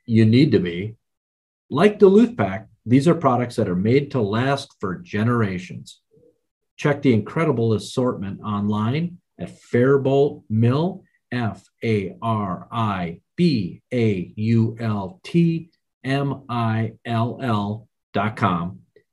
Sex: male